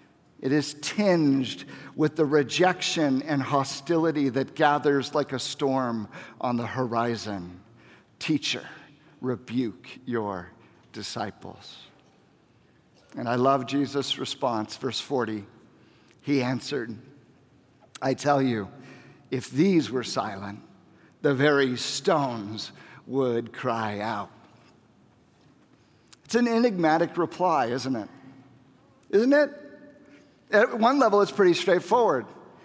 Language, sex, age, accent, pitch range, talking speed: English, male, 50-69, American, 135-185 Hz, 105 wpm